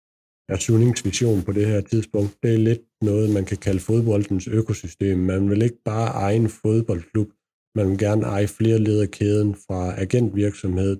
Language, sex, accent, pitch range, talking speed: Danish, male, native, 95-110 Hz, 175 wpm